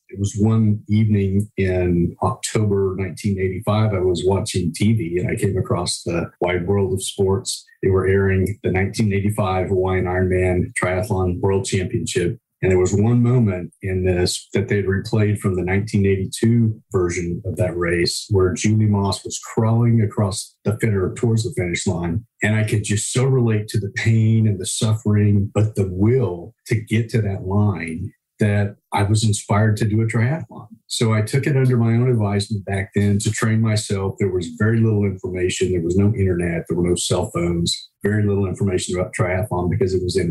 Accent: American